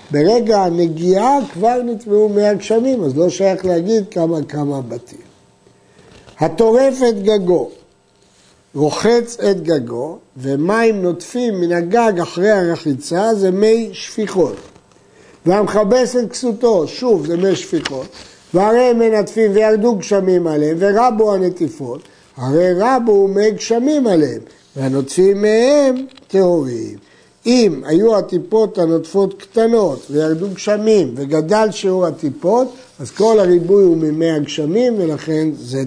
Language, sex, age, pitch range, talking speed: Hebrew, male, 60-79, 165-225 Hz, 115 wpm